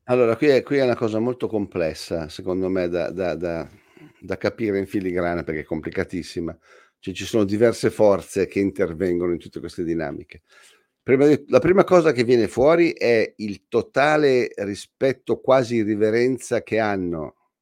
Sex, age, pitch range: male, 50-69, 95-125 Hz